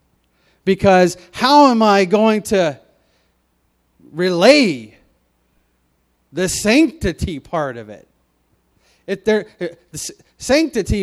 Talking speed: 70 wpm